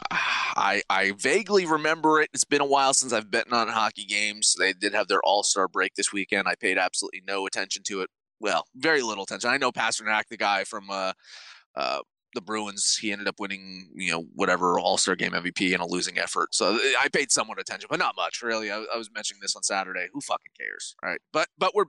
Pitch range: 110-155 Hz